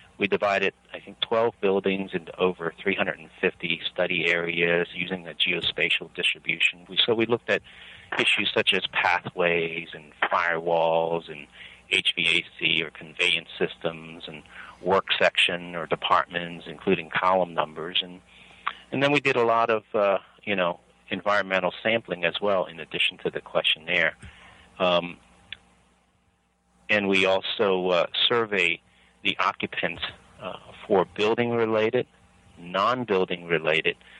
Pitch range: 85-95 Hz